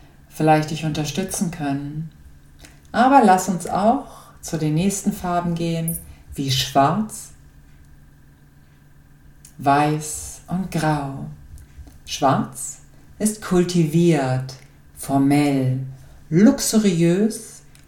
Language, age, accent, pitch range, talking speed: German, 50-69, German, 135-200 Hz, 75 wpm